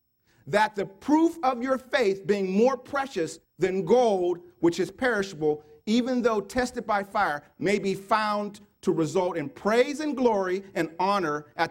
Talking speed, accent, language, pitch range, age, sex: 160 wpm, American, English, 160-240 Hz, 40-59, male